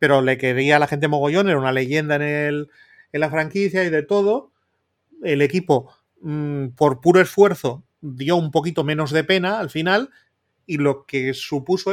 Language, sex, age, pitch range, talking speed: Spanish, male, 30-49, 135-170 Hz, 170 wpm